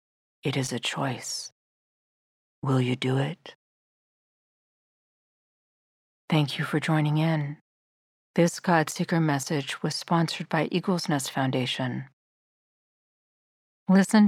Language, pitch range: English, 155-190 Hz